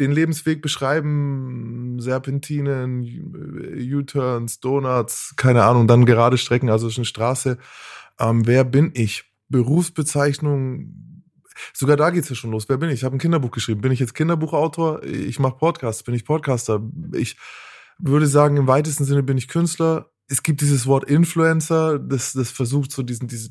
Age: 20-39